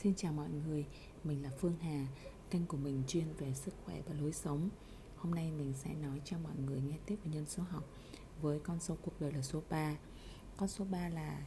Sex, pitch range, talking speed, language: female, 140-170 Hz, 230 wpm, Vietnamese